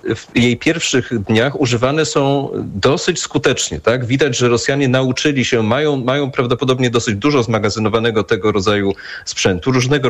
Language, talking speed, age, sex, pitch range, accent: Polish, 145 wpm, 40-59, male, 110-145 Hz, native